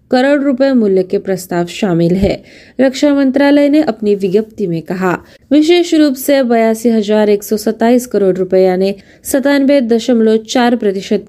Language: Marathi